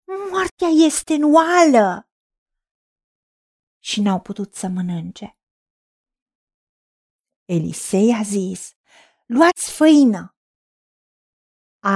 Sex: female